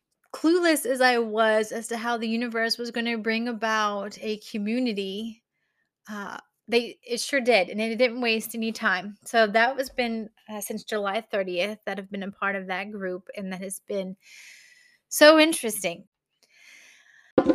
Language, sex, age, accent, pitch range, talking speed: English, female, 20-39, American, 200-240 Hz, 170 wpm